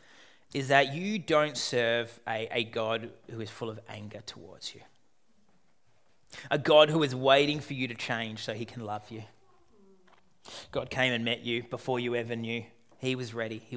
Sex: male